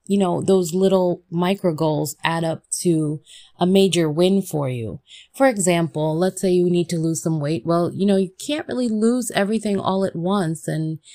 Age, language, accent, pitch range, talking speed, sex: 20-39, English, American, 165-200 Hz, 195 wpm, female